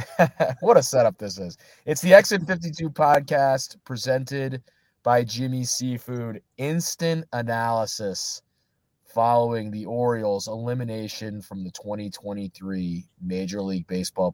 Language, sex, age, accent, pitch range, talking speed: English, male, 30-49, American, 105-135 Hz, 105 wpm